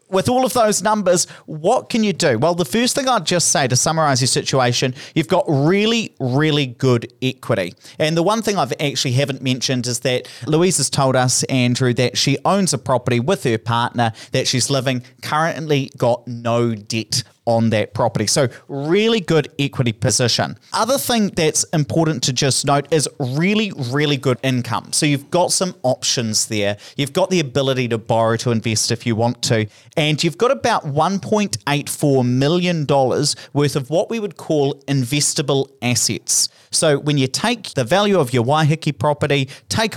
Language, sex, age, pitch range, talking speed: English, male, 30-49, 125-160 Hz, 180 wpm